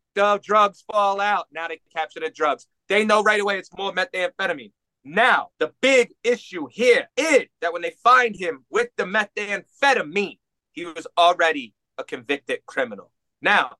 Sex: male